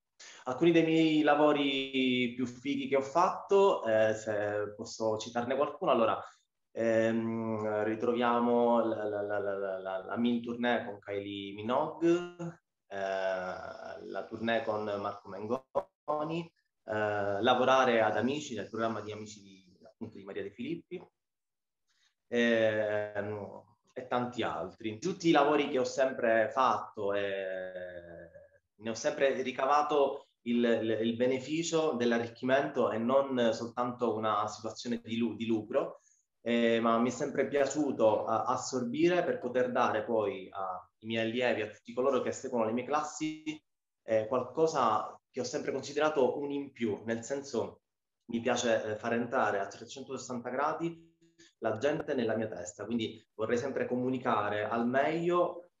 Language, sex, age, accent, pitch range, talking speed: Italian, male, 20-39, native, 110-140 Hz, 135 wpm